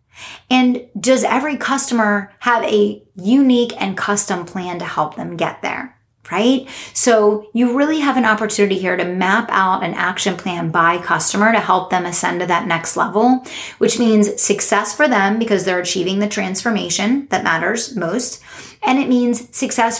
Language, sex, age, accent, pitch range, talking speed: English, female, 30-49, American, 185-235 Hz, 170 wpm